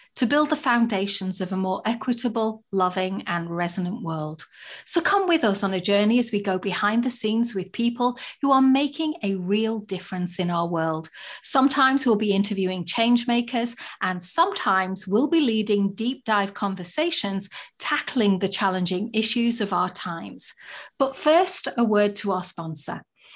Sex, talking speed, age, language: female, 165 wpm, 40-59, English